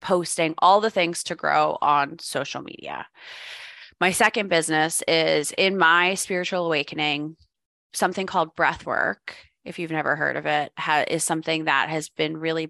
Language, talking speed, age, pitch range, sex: English, 150 wpm, 20-39, 150-175 Hz, female